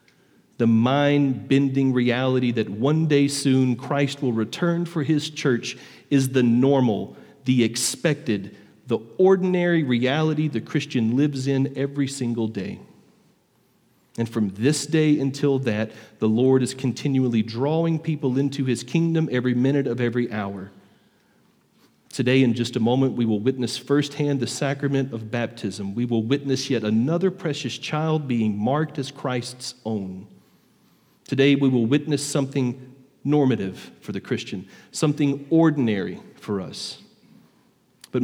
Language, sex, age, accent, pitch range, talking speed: English, male, 40-59, American, 115-145 Hz, 135 wpm